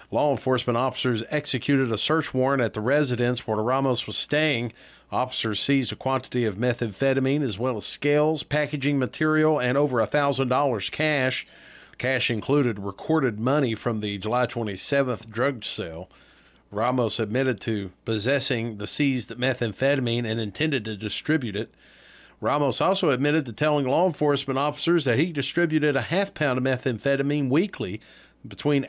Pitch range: 120-150 Hz